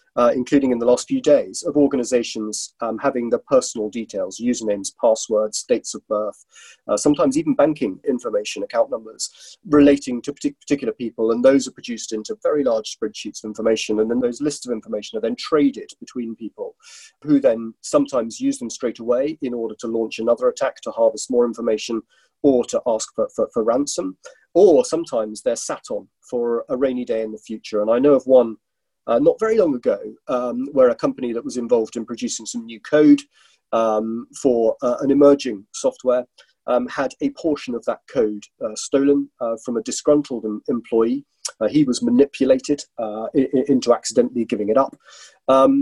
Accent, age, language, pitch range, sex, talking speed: British, 30-49, English, 115-180 Hz, male, 185 wpm